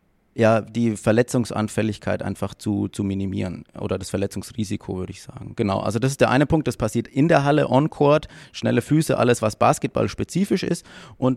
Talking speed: 185 wpm